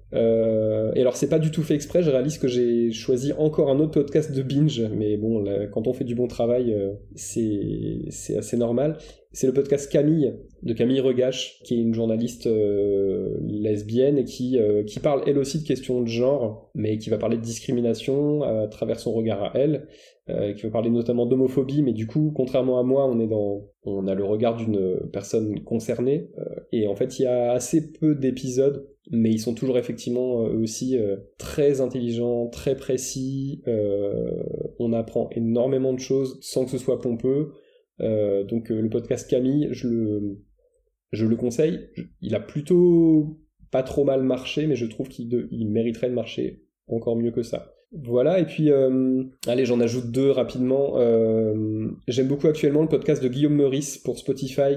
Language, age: French, 20-39